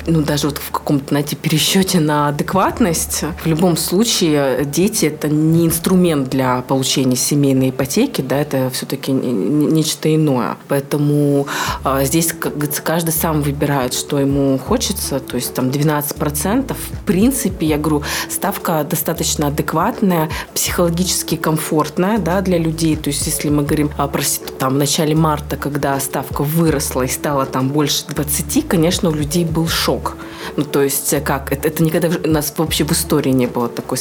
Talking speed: 165 wpm